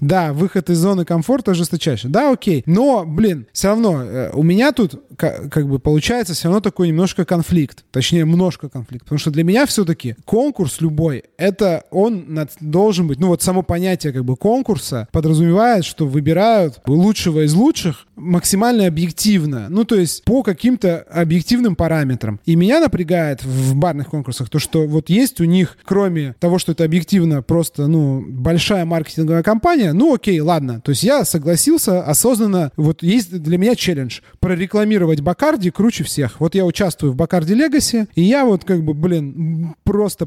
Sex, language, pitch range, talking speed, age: male, Russian, 155-200 Hz, 165 wpm, 20-39